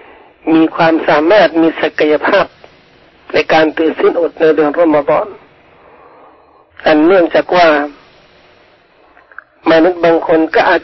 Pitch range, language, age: 155-185 Hz, Thai, 40-59